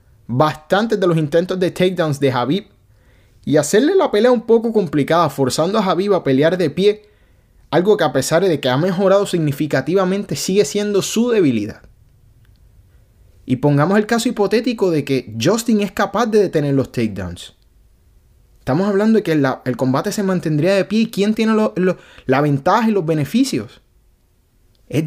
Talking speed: 165 wpm